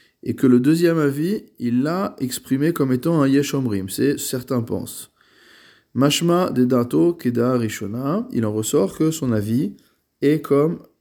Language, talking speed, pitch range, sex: French, 155 wpm, 115-140 Hz, male